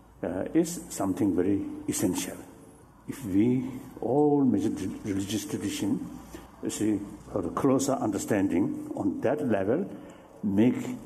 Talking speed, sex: 115 wpm, male